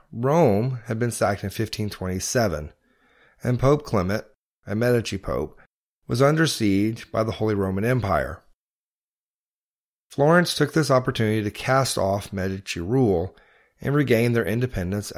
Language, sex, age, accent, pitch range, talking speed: English, male, 40-59, American, 100-130 Hz, 130 wpm